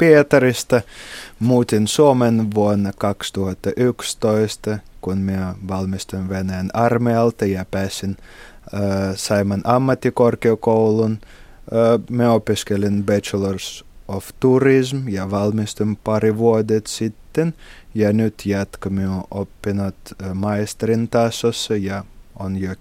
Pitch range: 100-120 Hz